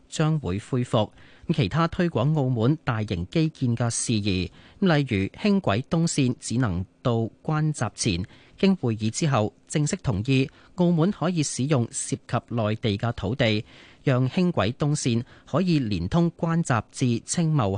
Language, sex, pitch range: Chinese, male, 110-155 Hz